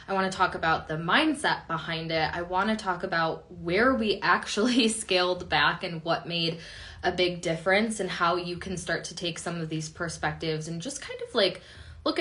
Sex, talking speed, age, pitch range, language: female, 195 wpm, 20-39, 180-230 Hz, English